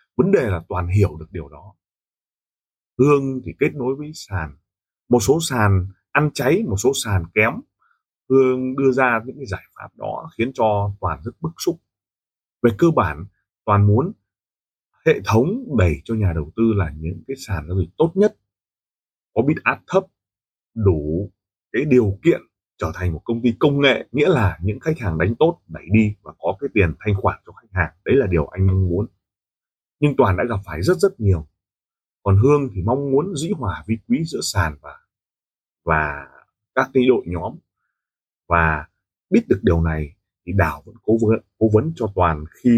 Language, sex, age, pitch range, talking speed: Vietnamese, male, 30-49, 90-130 Hz, 190 wpm